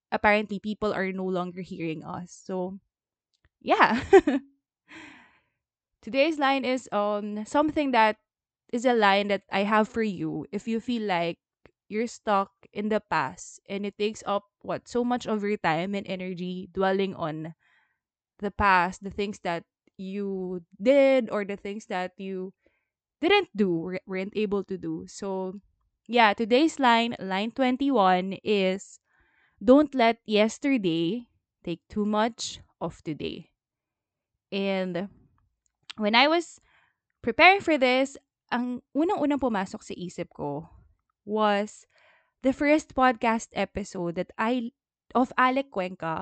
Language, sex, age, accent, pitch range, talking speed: English, female, 20-39, Filipino, 185-235 Hz, 130 wpm